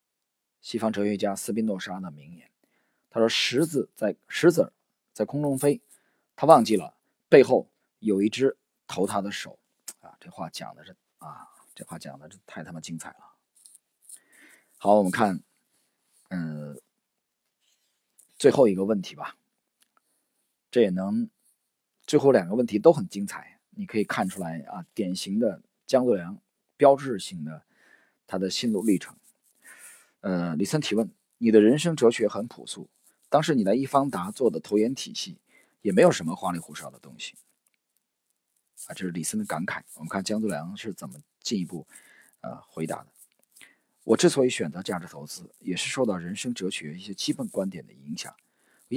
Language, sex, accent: Chinese, male, native